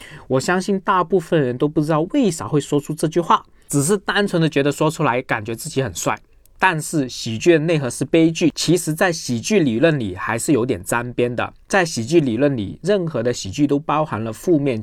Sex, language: male, Chinese